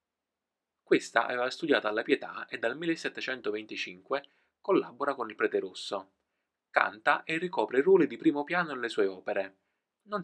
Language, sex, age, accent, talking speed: Italian, male, 20-39, native, 140 wpm